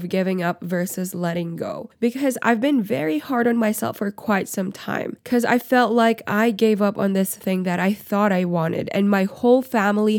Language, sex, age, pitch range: English, female, 10-29, 190-240 Hz